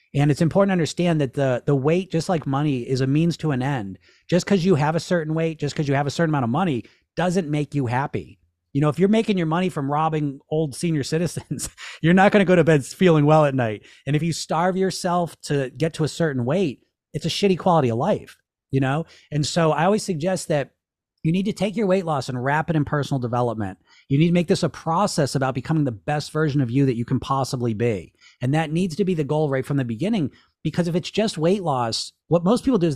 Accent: American